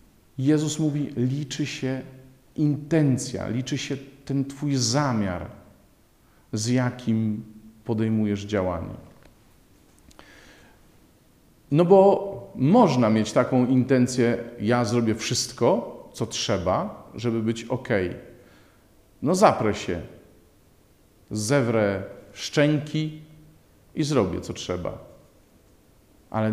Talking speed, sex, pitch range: 85 wpm, male, 105-145 Hz